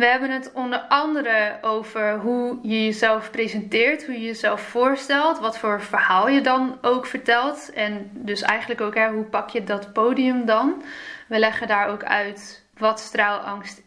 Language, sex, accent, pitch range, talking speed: Dutch, female, Dutch, 215-250 Hz, 170 wpm